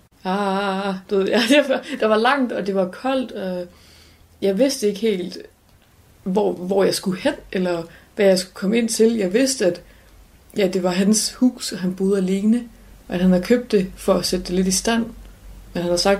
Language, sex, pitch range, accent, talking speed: Danish, female, 180-220 Hz, native, 200 wpm